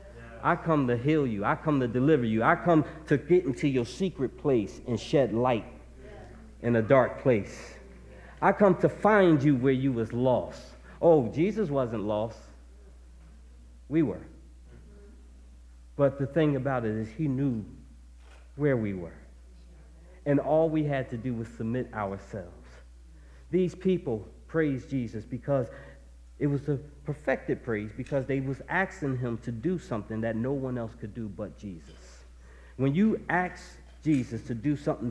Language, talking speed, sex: English, 160 wpm, male